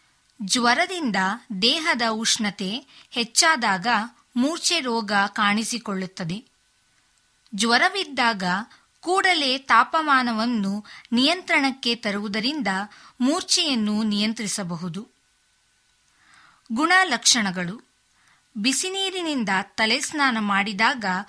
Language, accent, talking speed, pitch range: Kannada, native, 55 wpm, 205-280 Hz